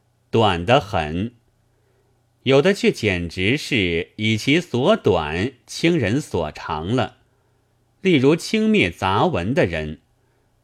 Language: Chinese